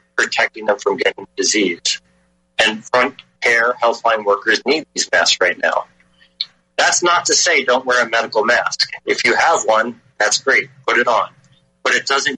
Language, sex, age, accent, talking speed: English, male, 40-59, American, 180 wpm